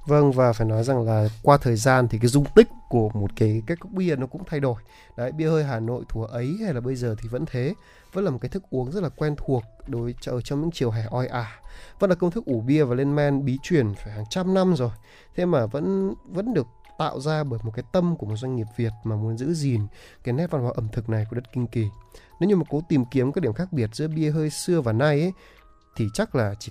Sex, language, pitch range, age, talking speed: male, Vietnamese, 115-160 Hz, 20-39, 275 wpm